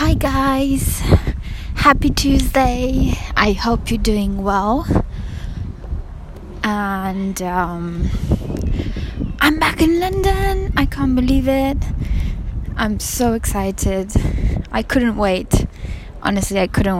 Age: 20-39